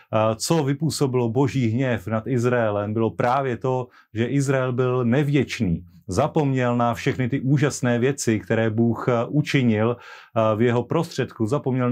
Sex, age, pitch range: male, 30-49, 115-135 Hz